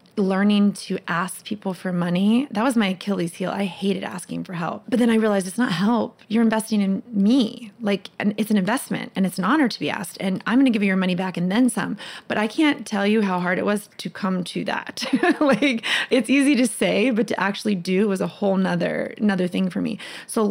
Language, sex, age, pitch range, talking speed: English, female, 20-39, 185-225 Hz, 235 wpm